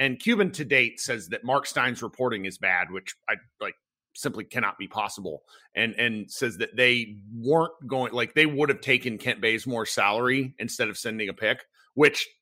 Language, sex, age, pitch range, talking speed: English, male, 40-59, 125-195 Hz, 190 wpm